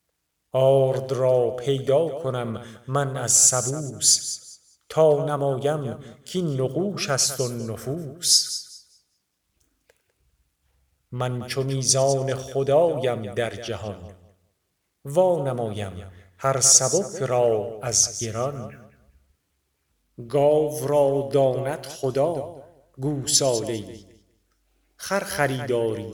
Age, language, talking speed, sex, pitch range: 50-69, Persian, 80 wpm, male, 105-135 Hz